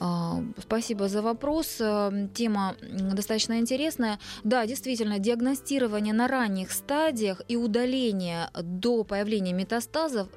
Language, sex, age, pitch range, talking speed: Russian, female, 20-39, 190-240 Hz, 100 wpm